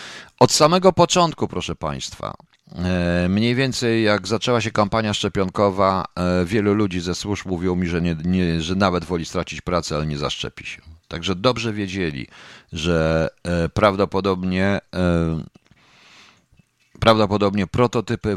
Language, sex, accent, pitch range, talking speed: Polish, male, native, 80-105 Hz, 120 wpm